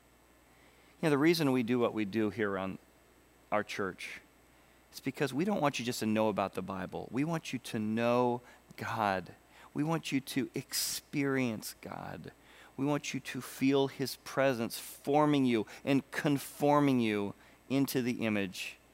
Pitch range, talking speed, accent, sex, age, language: 125-150 Hz, 160 wpm, American, male, 40-59, English